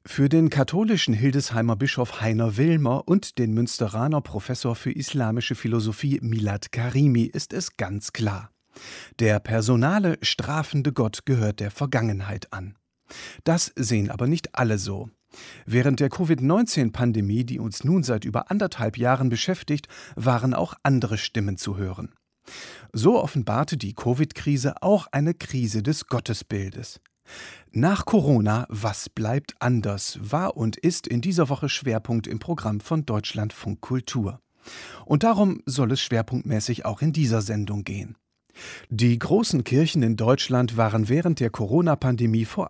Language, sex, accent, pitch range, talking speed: German, male, German, 110-145 Hz, 135 wpm